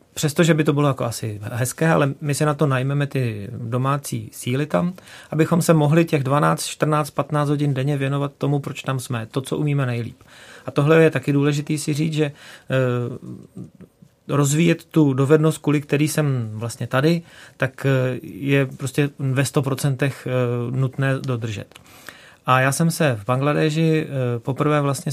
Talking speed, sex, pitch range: 160 wpm, male, 120-145 Hz